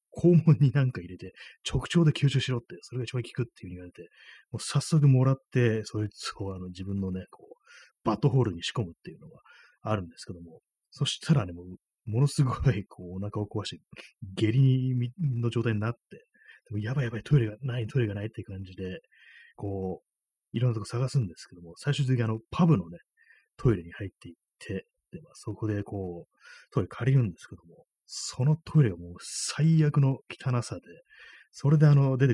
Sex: male